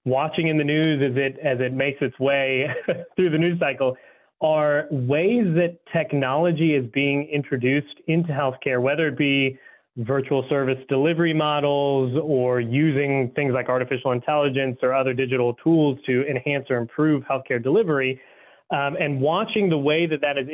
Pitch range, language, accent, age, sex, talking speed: 130-155 Hz, English, American, 30-49, male, 160 wpm